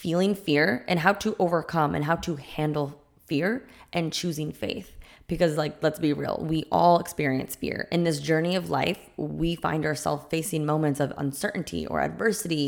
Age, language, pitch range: 20-39, English, 150-175 Hz